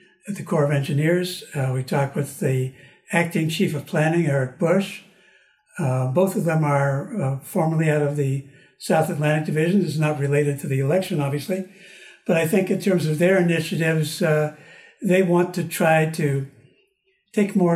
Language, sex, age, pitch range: English, male, 60-79, 150-185 Hz